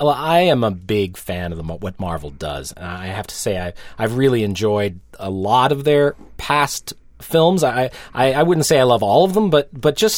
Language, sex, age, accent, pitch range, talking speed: English, male, 30-49, American, 105-145 Hz, 220 wpm